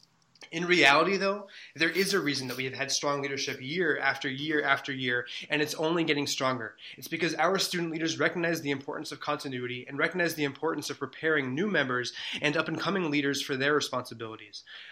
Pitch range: 130-160 Hz